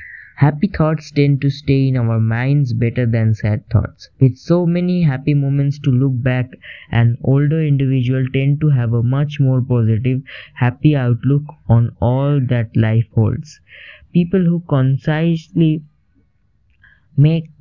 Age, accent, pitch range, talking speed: 20-39, Indian, 115-145 Hz, 140 wpm